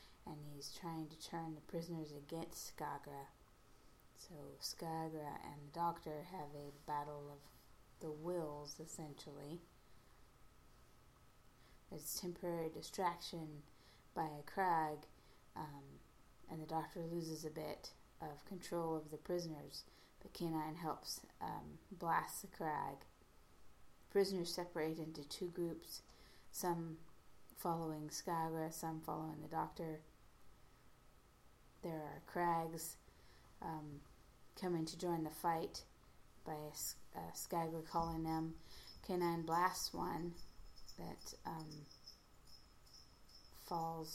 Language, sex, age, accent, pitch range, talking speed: English, female, 20-39, American, 150-170 Hz, 105 wpm